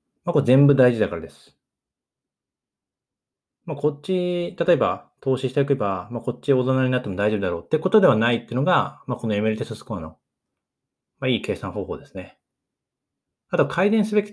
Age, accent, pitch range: 20-39, native, 105-140 Hz